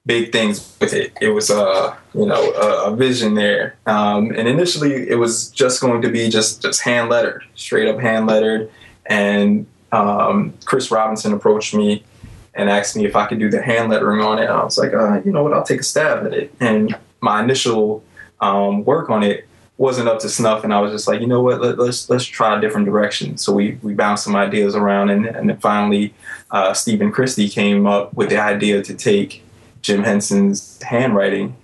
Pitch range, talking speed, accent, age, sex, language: 105-115 Hz, 215 wpm, American, 20-39, male, English